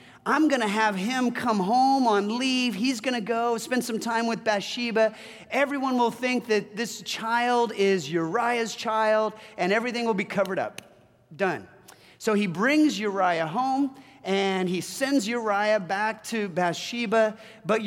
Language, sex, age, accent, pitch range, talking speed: English, male, 40-59, American, 175-230 Hz, 160 wpm